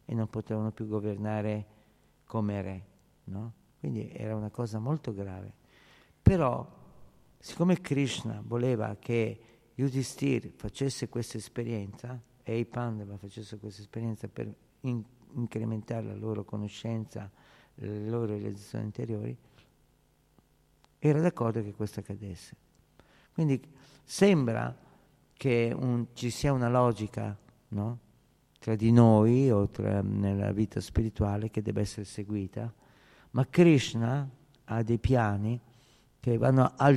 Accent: native